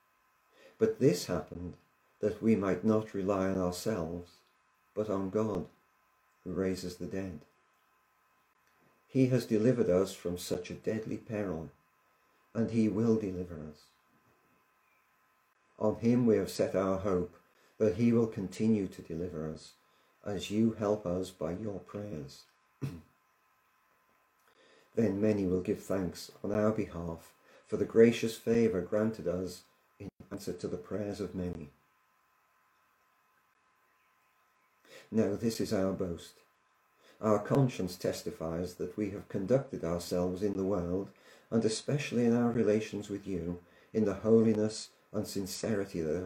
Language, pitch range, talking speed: English, 90-110 Hz, 130 wpm